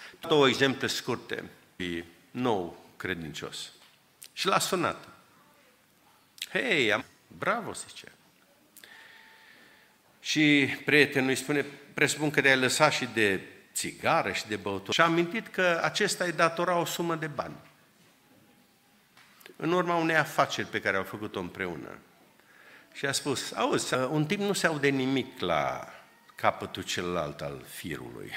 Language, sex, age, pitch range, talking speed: Romanian, male, 50-69, 115-165 Hz, 135 wpm